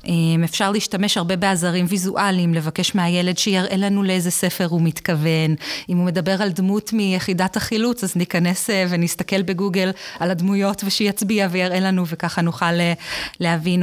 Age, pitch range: 20-39, 170-195 Hz